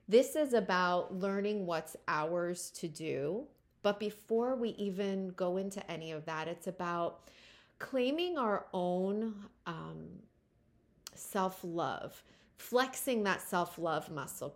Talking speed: 125 wpm